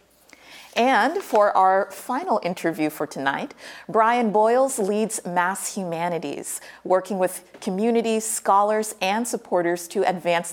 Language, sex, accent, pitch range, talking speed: English, female, American, 170-205 Hz, 115 wpm